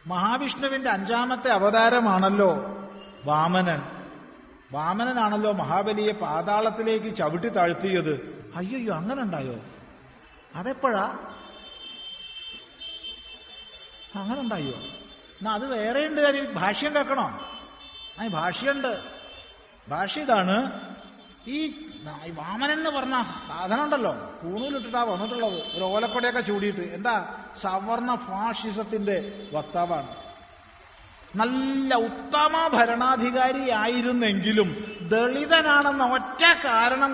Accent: native